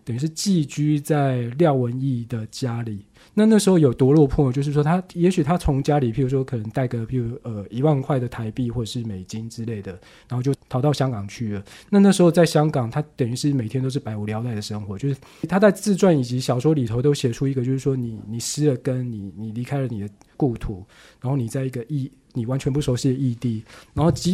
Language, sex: Chinese, male